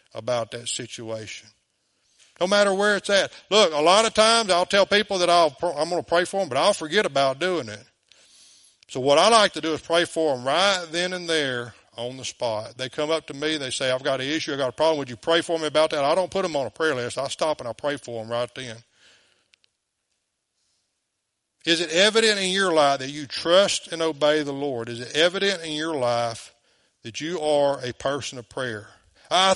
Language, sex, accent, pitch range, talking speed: English, male, American, 125-180 Hz, 225 wpm